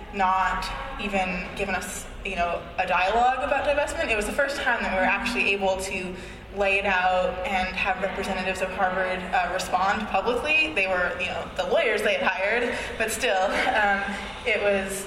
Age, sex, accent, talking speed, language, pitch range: 20-39, female, American, 185 wpm, English, 185-205 Hz